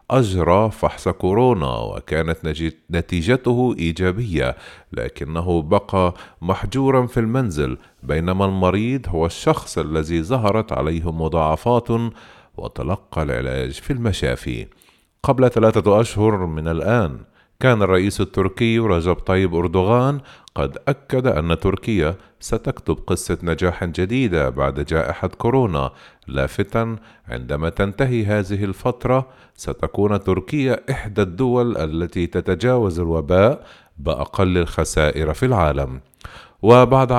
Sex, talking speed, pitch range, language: male, 100 wpm, 80-115 Hz, English